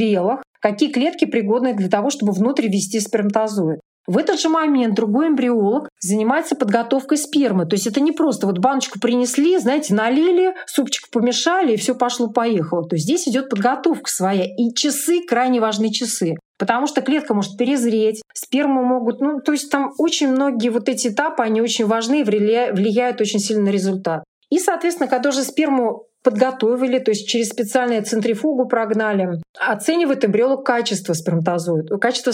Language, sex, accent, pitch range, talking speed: Russian, female, native, 215-280 Hz, 160 wpm